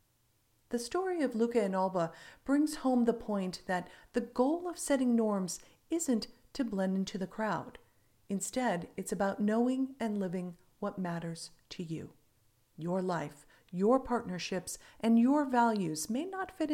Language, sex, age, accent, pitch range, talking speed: English, female, 50-69, American, 165-240 Hz, 150 wpm